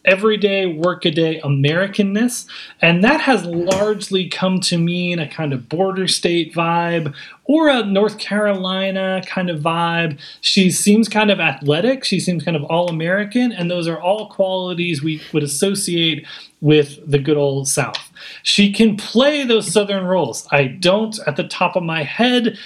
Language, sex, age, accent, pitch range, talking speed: English, male, 30-49, American, 160-205 Hz, 160 wpm